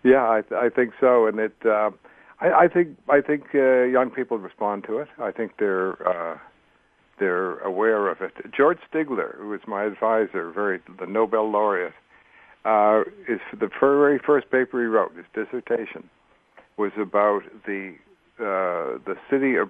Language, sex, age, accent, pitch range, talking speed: English, male, 60-79, American, 100-120 Hz, 170 wpm